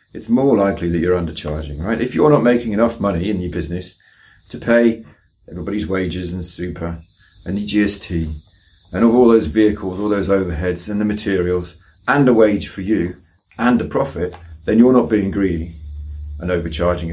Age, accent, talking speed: 40-59, British, 175 wpm